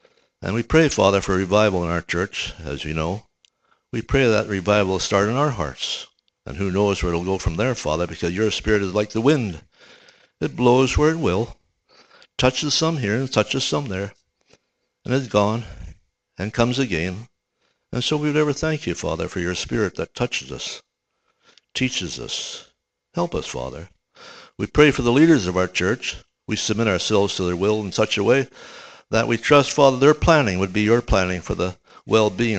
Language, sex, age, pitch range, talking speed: English, male, 60-79, 90-120 Hz, 195 wpm